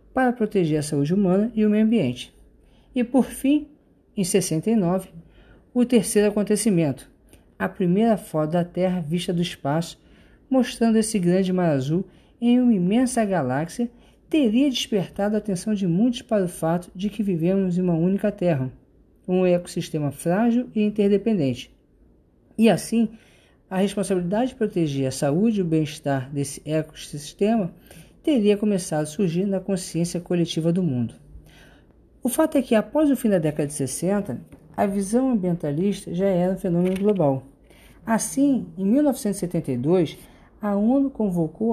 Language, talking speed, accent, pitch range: Portuguese, 145 wpm, Brazilian, 165-220 Hz